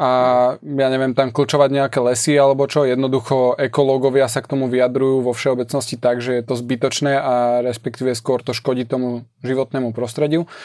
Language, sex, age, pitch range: Slovak, male, 20-39, 125-145 Hz